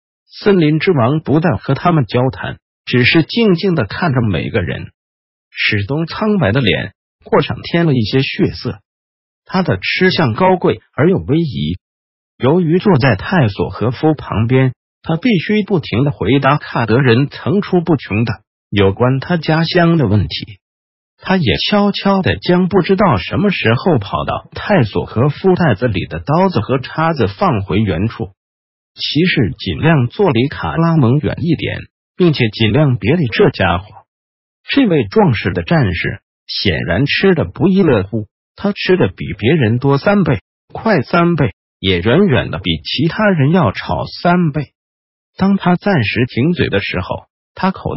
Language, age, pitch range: Chinese, 50-69, 105-170 Hz